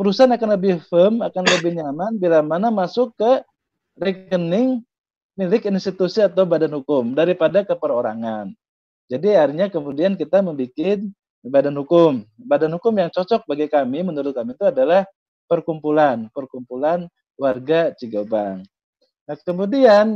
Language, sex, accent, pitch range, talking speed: Indonesian, male, native, 175-235 Hz, 125 wpm